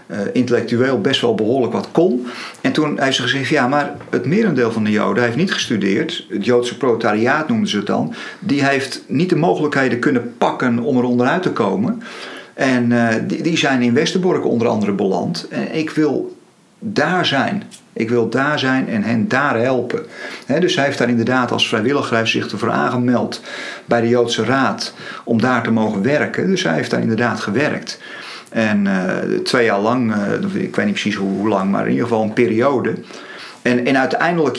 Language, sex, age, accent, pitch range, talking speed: Dutch, male, 50-69, Belgian, 115-135 Hz, 200 wpm